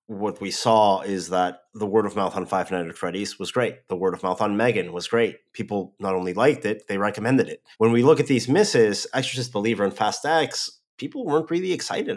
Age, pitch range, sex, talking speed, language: 30-49, 100-140 Hz, male, 230 wpm, English